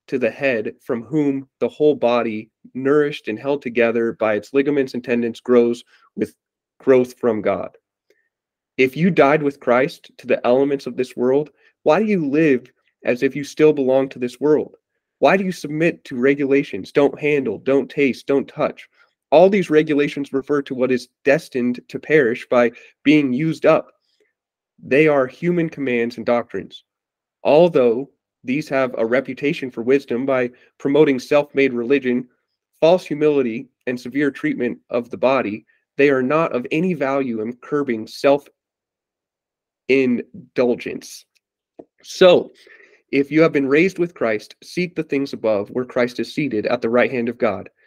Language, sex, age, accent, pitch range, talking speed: English, male, 30-49, American, 125-150 Hz, 160 wpm